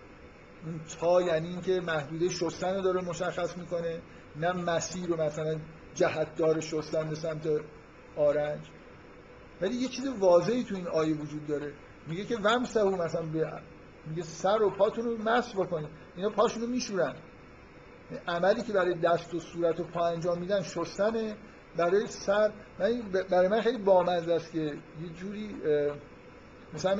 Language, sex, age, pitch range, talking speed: Persian, male, 50-69, 160-185 Hz, 145 wpm